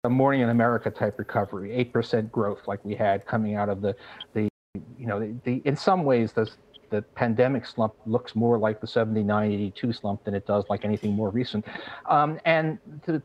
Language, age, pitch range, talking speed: English, 50-69, 110-135 Hz, 215 wpm